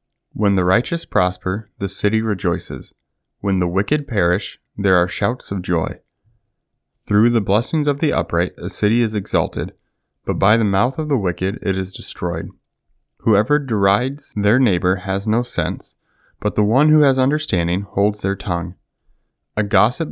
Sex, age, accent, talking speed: male, 20-39, American, 160 wpm